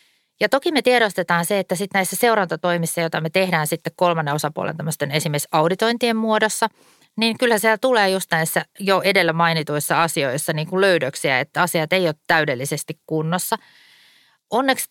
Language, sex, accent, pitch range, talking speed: Finnish, female, native, 155-195 Hz, 155 wpm